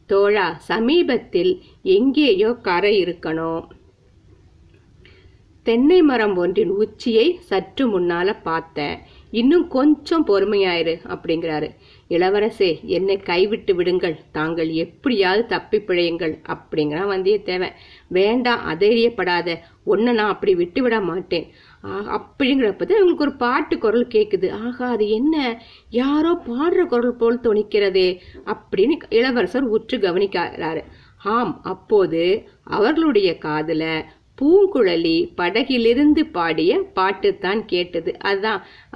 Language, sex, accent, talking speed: Tamil, female, native, 100 wpm